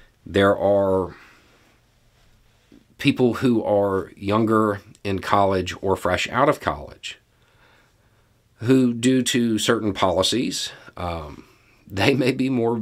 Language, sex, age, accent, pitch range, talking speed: English, male, 50-69, American, 95-115 Hz, 110 wpm